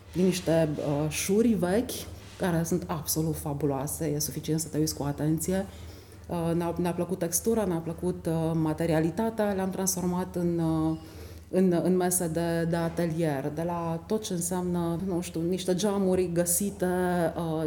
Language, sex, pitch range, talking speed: Romanian, female, 155-190 Hz, 155 wpm